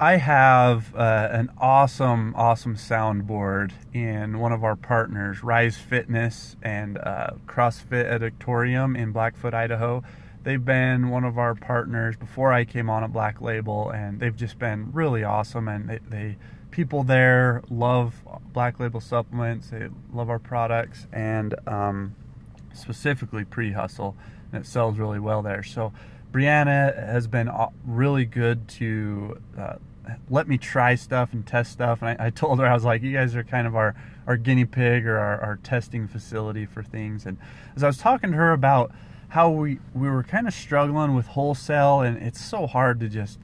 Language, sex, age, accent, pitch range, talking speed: English, male, 30-49, American, 110-125 Hz, 175 wpm